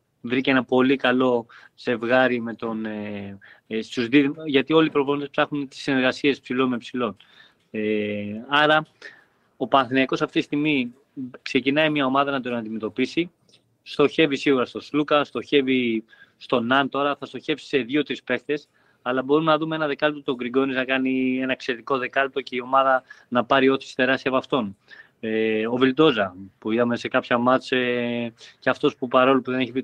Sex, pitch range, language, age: male, 120-140 Hz, Greek, 20-39